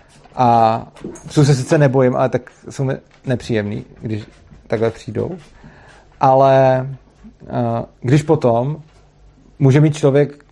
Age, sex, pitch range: 30-49, male, 115-140 Hz